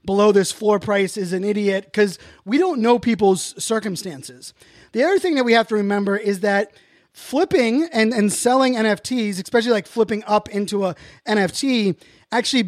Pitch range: 190-235 Hz